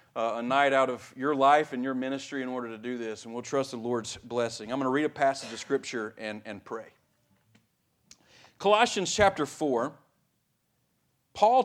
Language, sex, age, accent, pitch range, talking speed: English, male, 40-59, American, 115-150 Hz, 185 wpm